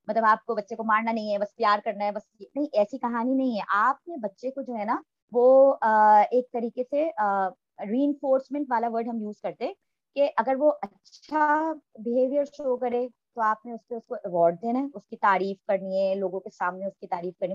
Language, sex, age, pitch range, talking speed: Urdu, male, 20-39, 205-260 Hz, 120 wpm